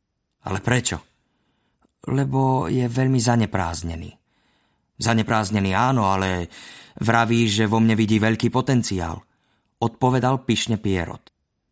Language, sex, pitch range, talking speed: Slovak, male, 100-130 Hz, 95 wpm